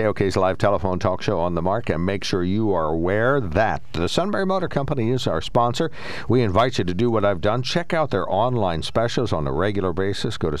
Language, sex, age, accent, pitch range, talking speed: English, male, 60-79, American, 80-105 Hz, 230 wpm